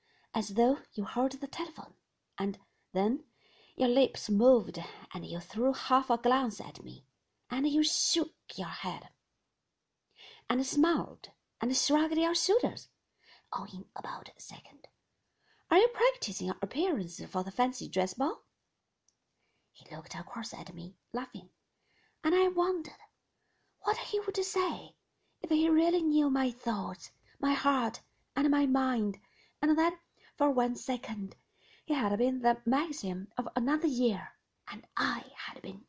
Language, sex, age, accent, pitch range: Chinese, female, 40-59, British, 195-320 Hz